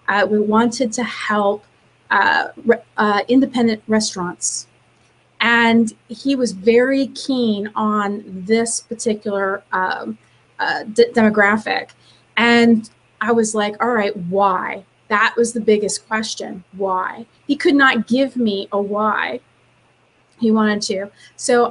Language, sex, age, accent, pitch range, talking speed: English, female, 30-49, American, 205-240 Hz, 120 wpm